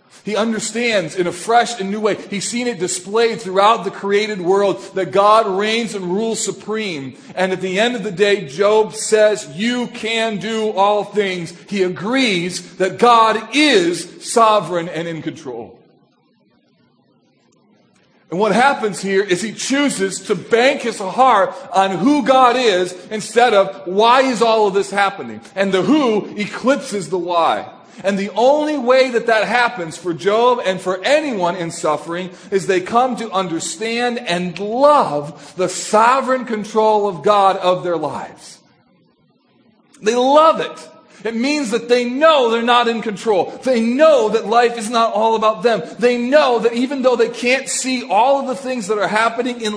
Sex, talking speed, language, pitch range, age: male, 170 wpm, English, 195-245 Hz, 40-59